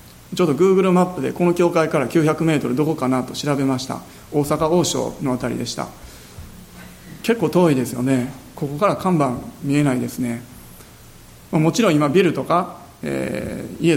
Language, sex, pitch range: Japanese, male, 135-180 Hz